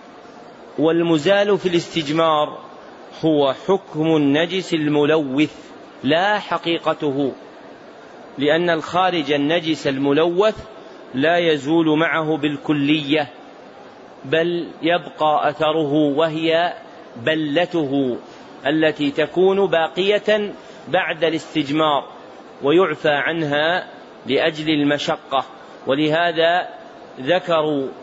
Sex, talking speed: male, 70 wpm